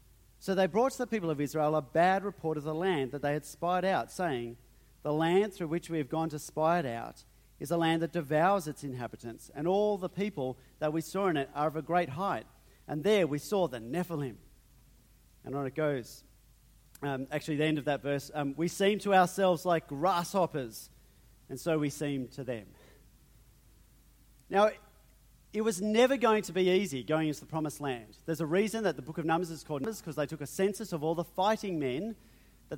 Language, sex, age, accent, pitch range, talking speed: English, male, 40-59, Australian, 150-195 Hz, 215 wpm